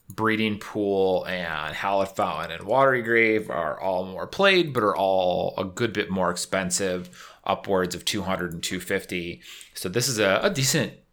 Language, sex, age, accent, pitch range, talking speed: English, male, 30-49, American, 95-120 Hz, 160 wpm